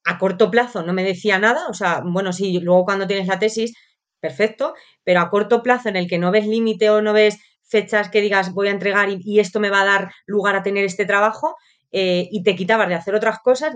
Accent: Spanish